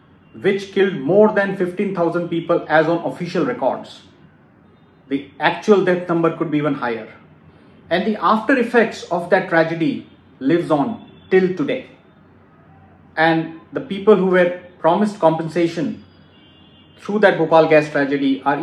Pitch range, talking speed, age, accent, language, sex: 160-215 Hz, 135 wpm, 30-49, Indian, English, male